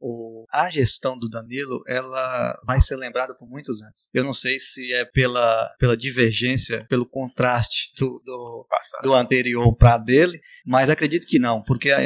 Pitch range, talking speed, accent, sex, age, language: 120-135 Hz, 160 wpm, Brazilian, male, 20-39, Portuguese